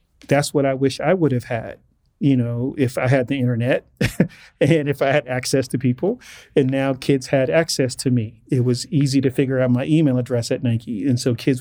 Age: 40-59